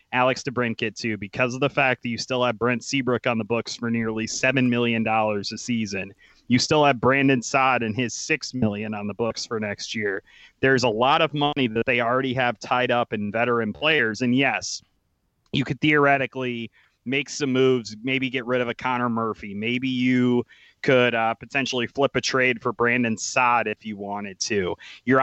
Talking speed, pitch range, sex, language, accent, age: 195 wpm, 115-135 Hz, male, English, American, 30-49